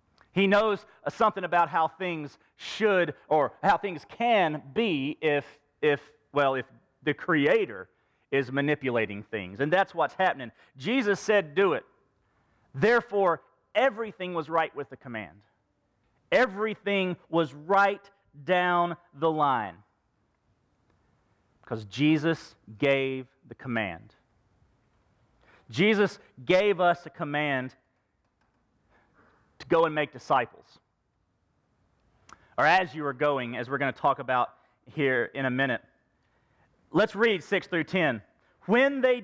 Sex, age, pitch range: male, 40-59, 145-205 Hz